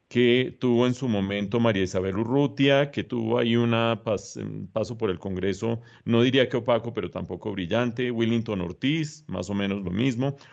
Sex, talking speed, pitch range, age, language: male, 170 wpm, 95-125 Hz, 40-59, English